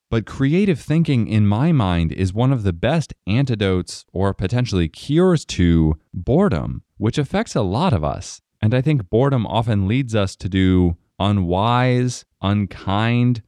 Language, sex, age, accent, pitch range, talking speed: English, male, 20-39, American, 90-120 Hz, 150 wpm